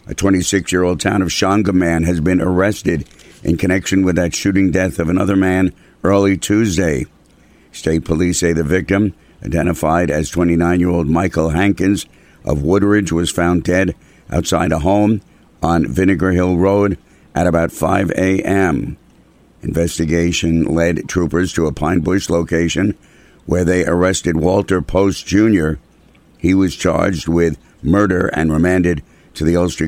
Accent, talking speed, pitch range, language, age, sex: American, 140 wpm, 85-105 Hz, English, 60-79, male